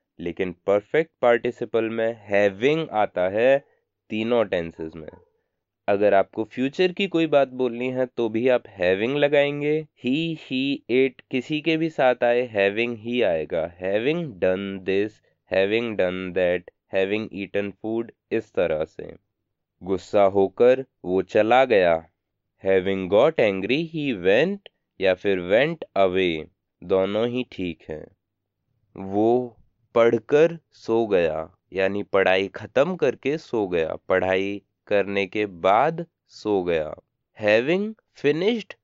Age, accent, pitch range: 20-39, Indian, 100-145 Hz